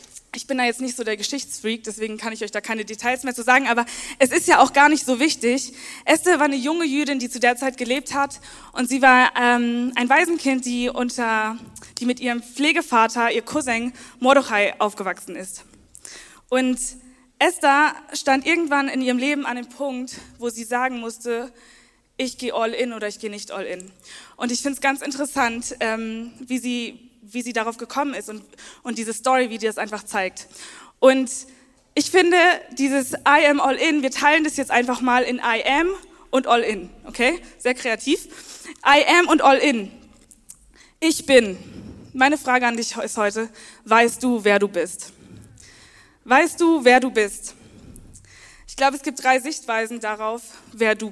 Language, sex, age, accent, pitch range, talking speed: German, female, 20-39, German, 230-280 Hz, 185 wpm